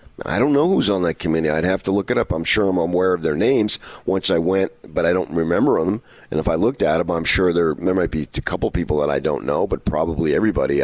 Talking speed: 275 wpm